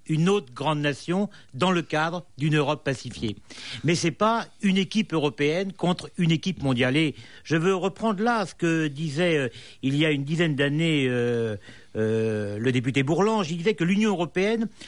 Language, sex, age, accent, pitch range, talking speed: French, male, 50-69, French, 130-190 Hz, 180 wpm